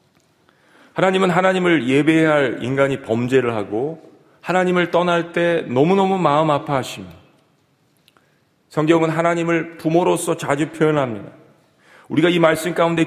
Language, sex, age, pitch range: Korean, male, 40-59, 150-180 Hz